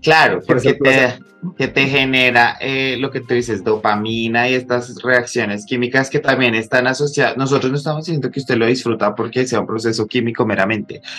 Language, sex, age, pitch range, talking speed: Spanish, male, 20-39, 110-135 Hz, 180 wpm